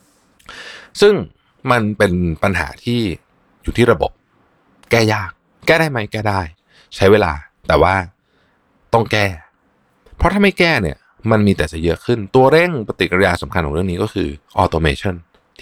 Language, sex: Thai, male